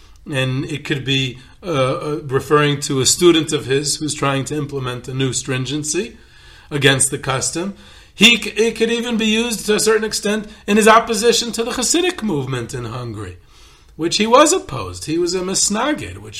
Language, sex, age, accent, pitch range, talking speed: English, male, 40-59, American, 135-170 Hz, 180 wpm